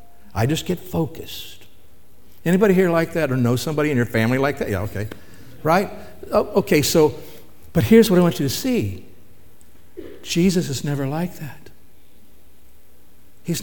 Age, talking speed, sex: 60-79, 155 wpm, male